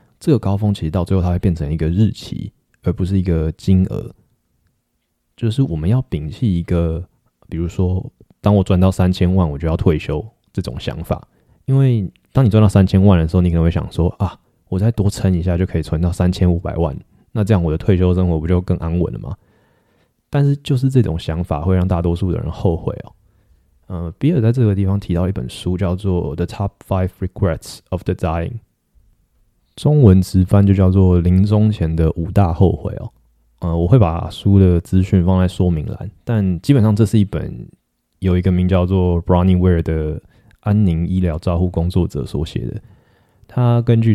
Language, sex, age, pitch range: Chinese, male, 20-39, 85-100 Hz